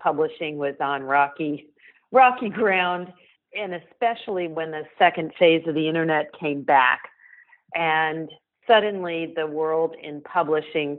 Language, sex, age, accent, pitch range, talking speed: English, female, 40-59, American, 140-175 Hz, 125 wpm